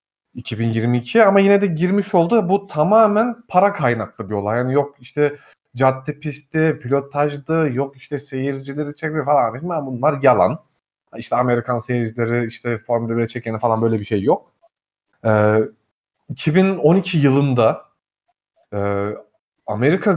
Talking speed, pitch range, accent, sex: 120 wpm, 120-170 Hz, native, male